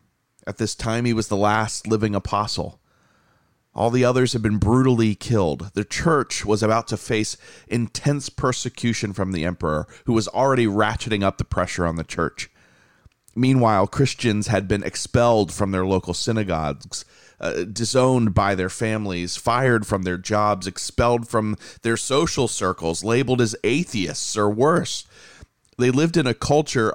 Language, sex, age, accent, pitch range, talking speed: English, male, 30-49, American, 100-125 Hz, 155 wpm